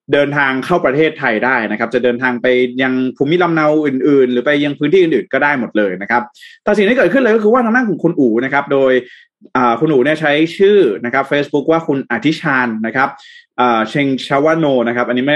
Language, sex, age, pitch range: Thai, male, 20-39, 125-165 Hz